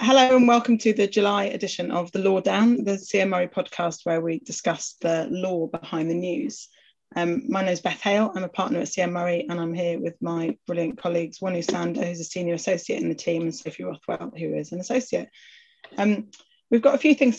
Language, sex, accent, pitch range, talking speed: English, female, British, 170-210 Hz, 220 wpm